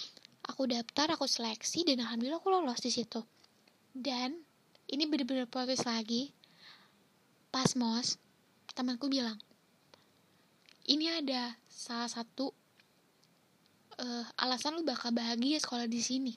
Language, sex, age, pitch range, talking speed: Malay, female, 10-29, 235-280 Hz, 115 wpm